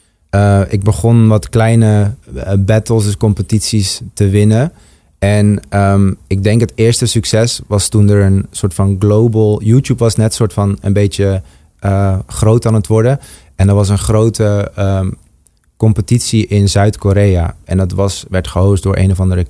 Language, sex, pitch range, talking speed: Dutch, male, 95-110 Hz, 170 wpm